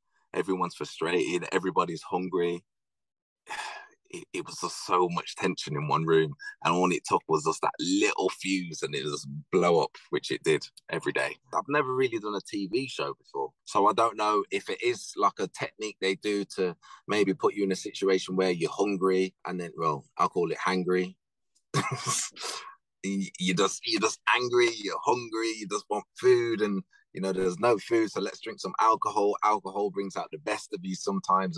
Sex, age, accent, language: male, 20-39, British, English